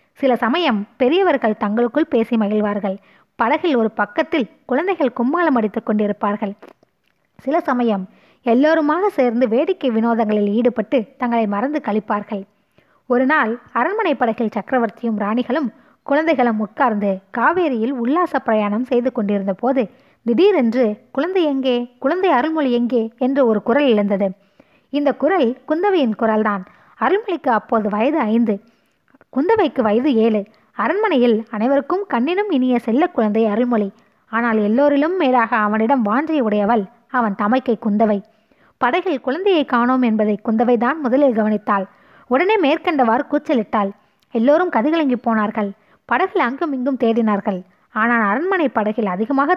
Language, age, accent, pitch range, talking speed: Tamil, 20-39, native, 215-280 Hz, 115 wpm